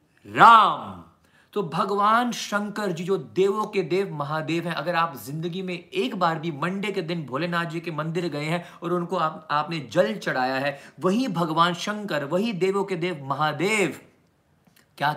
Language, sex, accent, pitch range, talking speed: Hindi, male, native, 135-185 Hz, 170 wpm